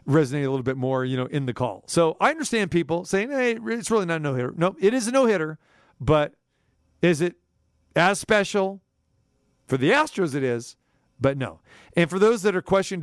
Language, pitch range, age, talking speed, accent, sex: English, 135-170 Hz, 40-59, 215 wpm, American, male